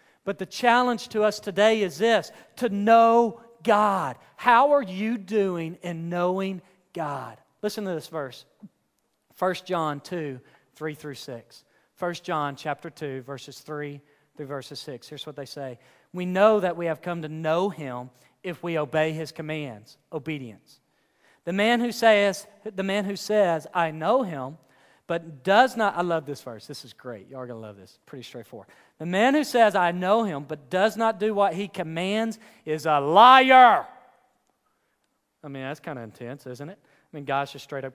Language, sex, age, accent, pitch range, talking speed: English, male, 40-59, American, 135-185 Hz, 180 wpm